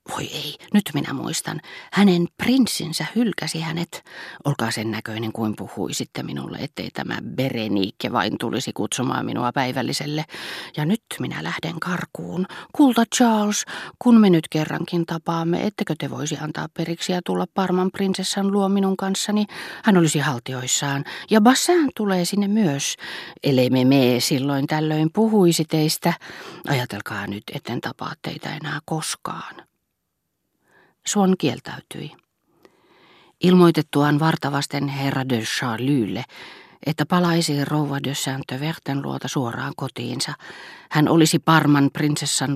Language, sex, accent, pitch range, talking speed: Finnish, female, native, 125-175 Hz, 125 wpm